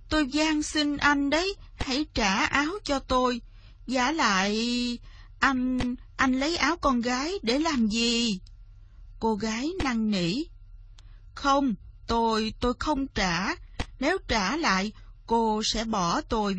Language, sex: Vietnamese, female